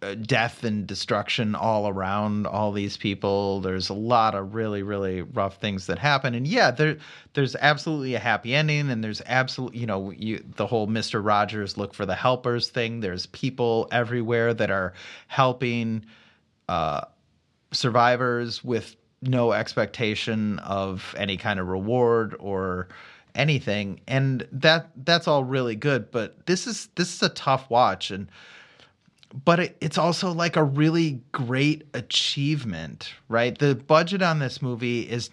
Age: 30-49